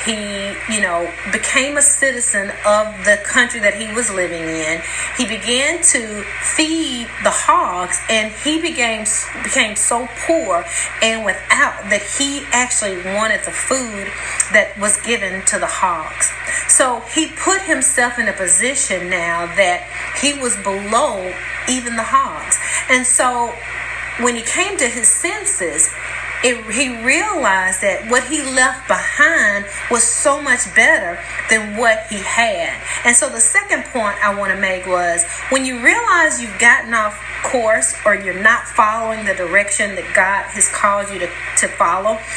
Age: 40-59